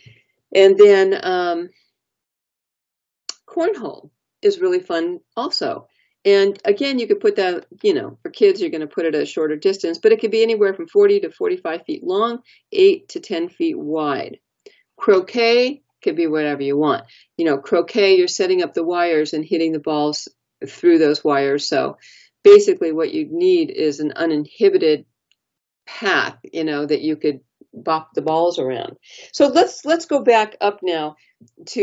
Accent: American